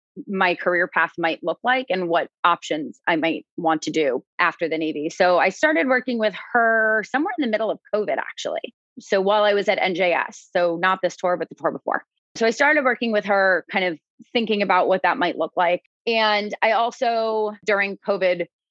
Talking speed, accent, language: 205 wpm, American, English